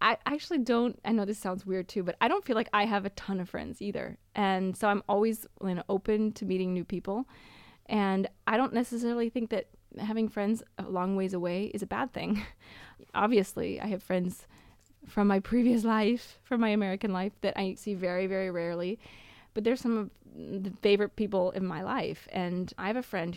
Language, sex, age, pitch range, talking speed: English, female, 20-39, 180-215 Hz, 205 wpm